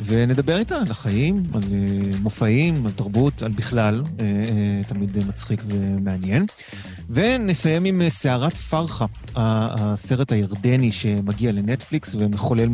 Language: Hebrew